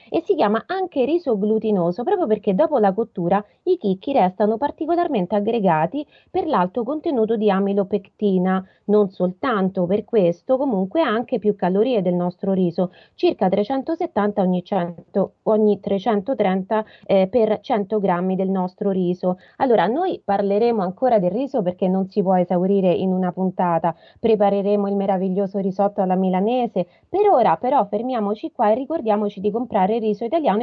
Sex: female